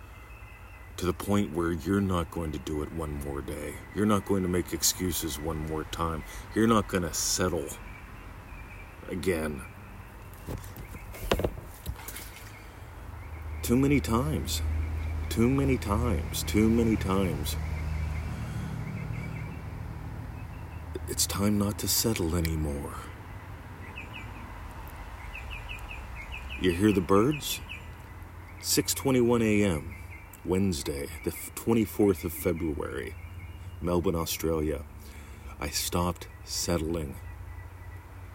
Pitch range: 80-100 Hz